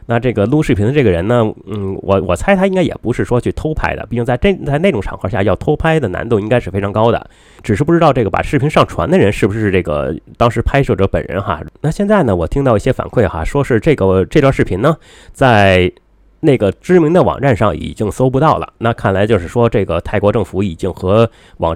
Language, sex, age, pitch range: Chinese, male, 30-49, 100-135 Hz